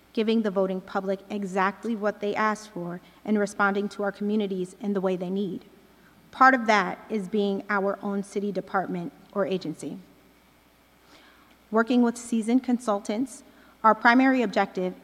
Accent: American